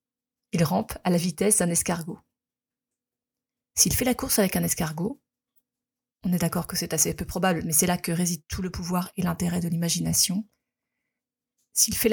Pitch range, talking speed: 175-220 Hz, 180 wpm